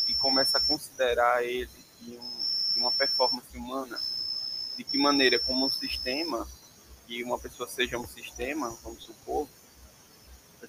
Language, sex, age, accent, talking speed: Portuguese, male, 20-39, Brazilian, 145 wpm